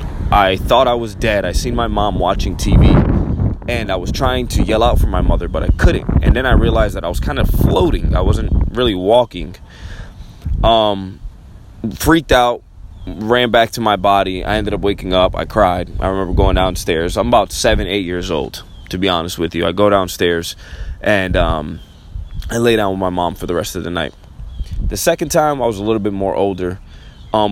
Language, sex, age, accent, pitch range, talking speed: English, male, 20-39, American, 85-110 Hz, 205 wpm